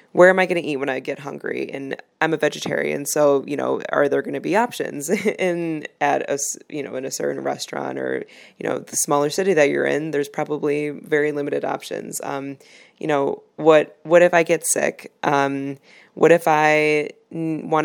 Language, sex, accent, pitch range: English, female, American, 140-155 Hz